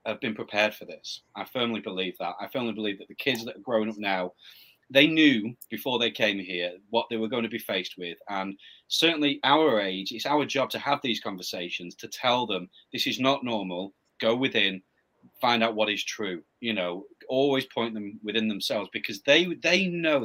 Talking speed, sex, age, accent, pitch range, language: 205 wpm, male, 30-49, British, 95-135 Hz, English